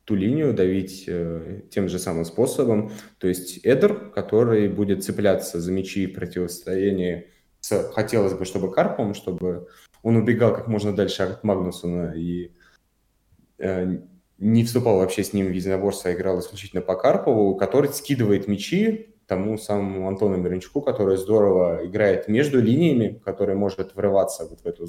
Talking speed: 150 wpm